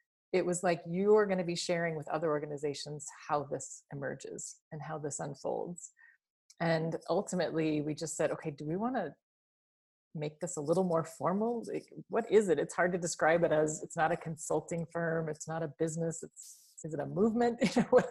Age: 30-49